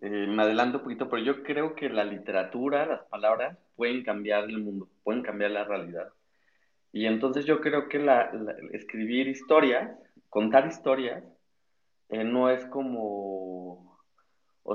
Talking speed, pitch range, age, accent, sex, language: 150 wpm, 105-135 Hz, 30-49, Mexican, male, Spanish